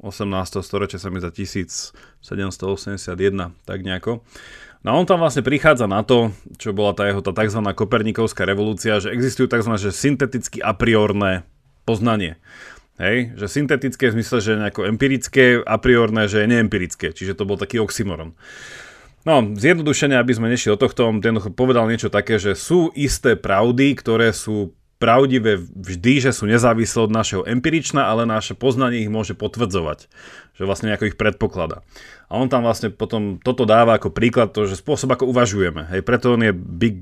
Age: 30-49